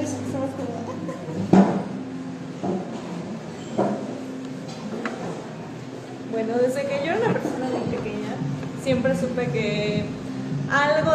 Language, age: Spanish, 20-39